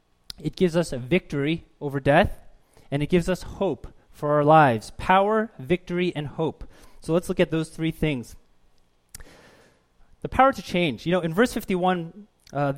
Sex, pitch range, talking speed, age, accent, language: male, 140-175 Hz, 170 wpm, 30-49, American, English